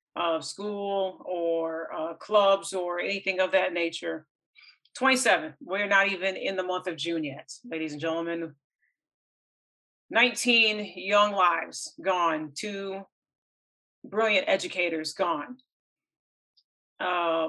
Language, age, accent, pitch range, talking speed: English, 40-59, American, 170-200 Hz, 110 wpm